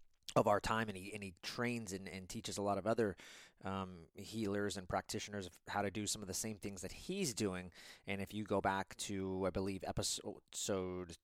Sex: male